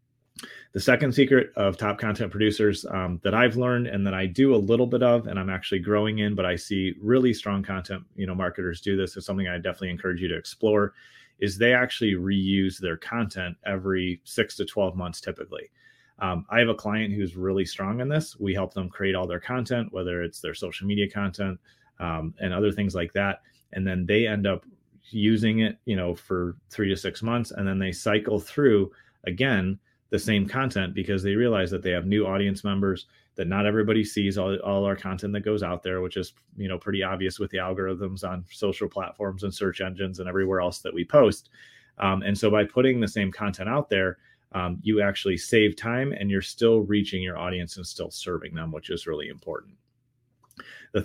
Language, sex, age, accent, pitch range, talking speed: English, male, 30-49, American, 95-110 Hz, 210 wpm